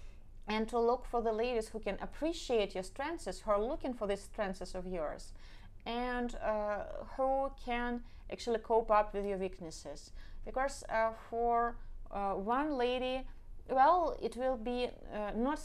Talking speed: 155 wpm